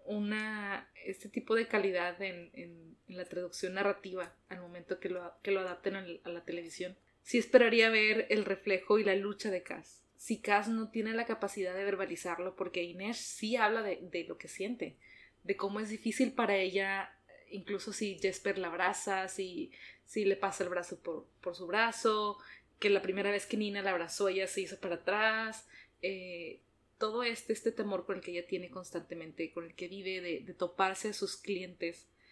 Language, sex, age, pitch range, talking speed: Spanish, female, 20-39, 180-215 Hz, 190 wpm